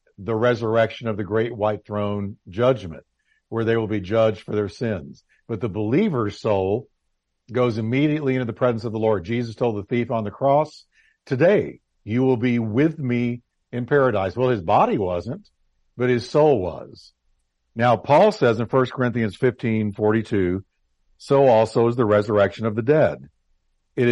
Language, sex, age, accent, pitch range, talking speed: English, male, 50-69, American, 105-130 Hz, 170 wpm